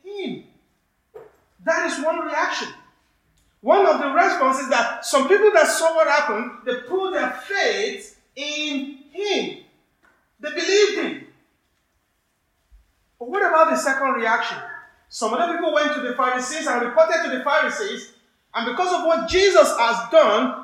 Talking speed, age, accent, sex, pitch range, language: 150 wpm, 50-69, Nigerian, male, 255-350 Hz, English